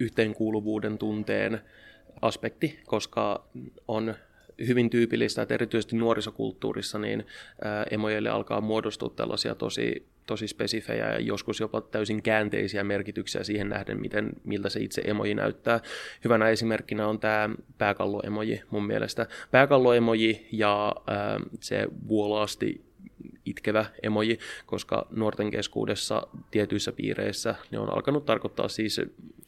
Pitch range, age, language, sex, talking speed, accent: 105-115 Hz, 20-39, Finnish, male, 110 wpm, native